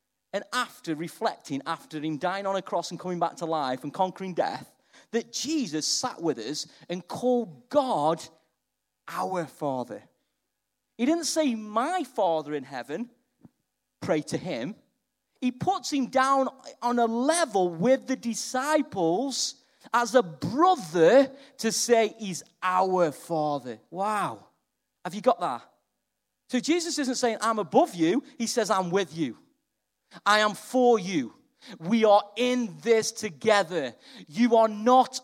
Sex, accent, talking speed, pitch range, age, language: male, British, 145 wpm, 180-250 Hz, 40-59, English